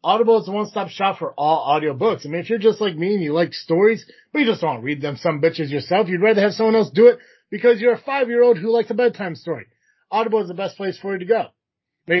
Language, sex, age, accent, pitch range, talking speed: English, male, 30-49, American, 145-190 Hz, 280 wpm